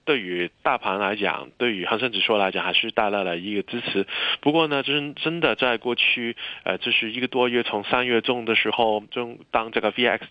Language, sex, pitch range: Chinese, male, 105-130 Hz